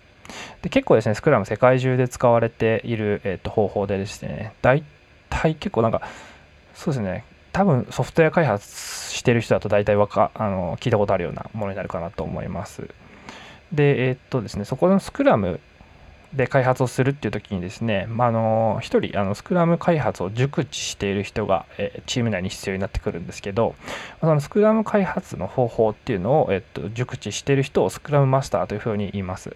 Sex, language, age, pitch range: male, Japanese, 20-39, 100-130 Hz